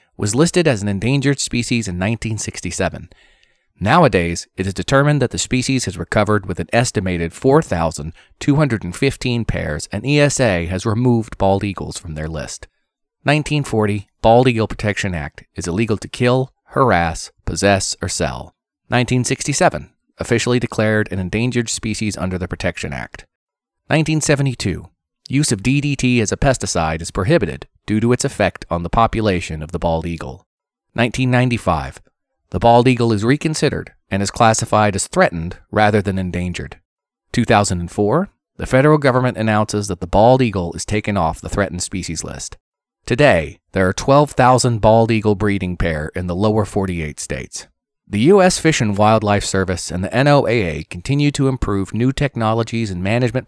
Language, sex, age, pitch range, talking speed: English, male, 30-49, 90-125 Hz, 150 wpm